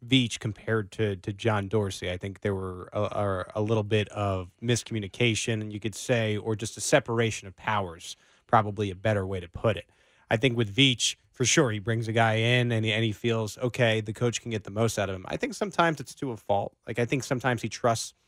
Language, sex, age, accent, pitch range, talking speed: English, male, 20-39, American, 105-125 Hz, 235 wpm